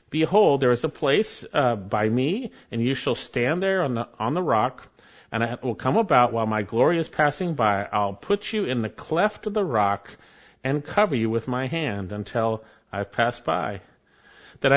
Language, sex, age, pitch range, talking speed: English, male, 50-69, 120-175 Hz, 200 wpm